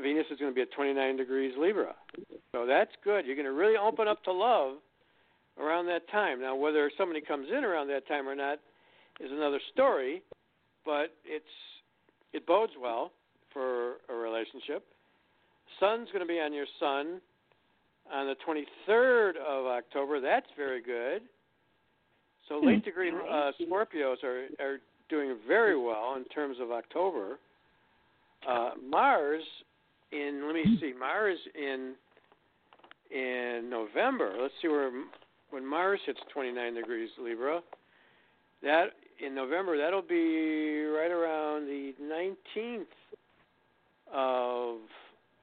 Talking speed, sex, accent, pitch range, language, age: 135 wpm, male, American, 140-195 Hz, English, 60-79